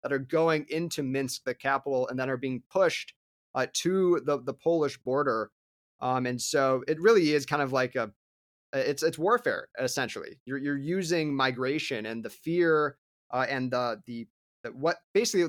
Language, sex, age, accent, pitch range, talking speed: English, male, 30-49, American, 130-160 Hz, 180 wpm